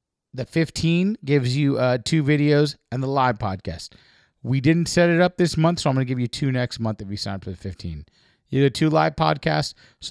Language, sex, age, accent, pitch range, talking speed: English, male, 30-49, American, 115-150 Hz, 235 wpm